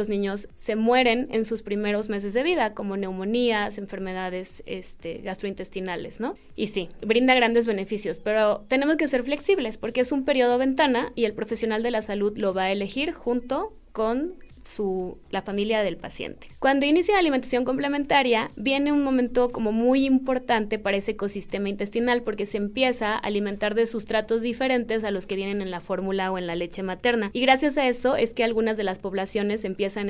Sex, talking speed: female, 185 wpm